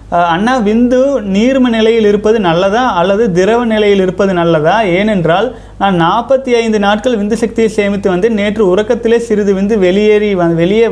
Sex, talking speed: male, 150 wpm